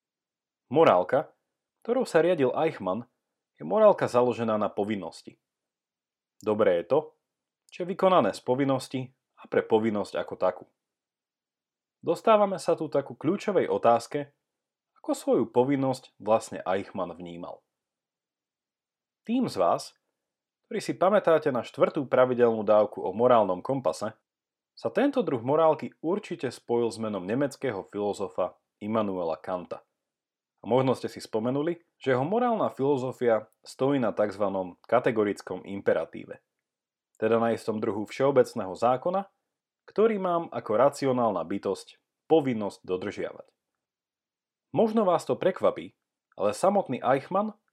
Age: 30-49